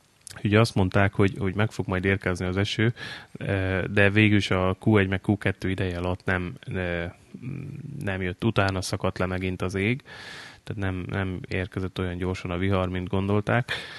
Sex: male